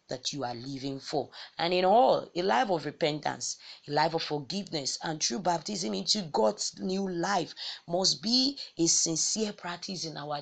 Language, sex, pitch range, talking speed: English, female, 150-205 Hz, 175 wpm